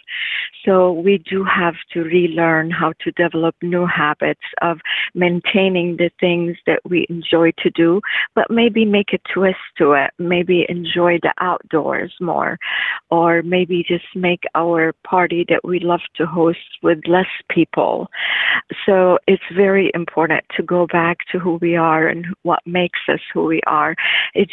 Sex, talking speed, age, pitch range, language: female, 160 wpm, 40-59, 165-180 Hz, English